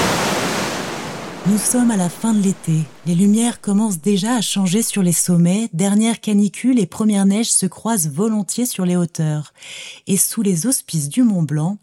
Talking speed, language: 165 wpm, French